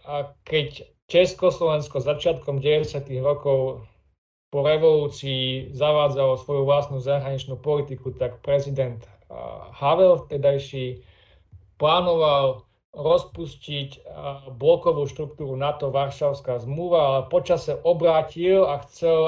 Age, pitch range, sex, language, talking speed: 40-59, 130-150 Hz, male, Slovak, 90 wpm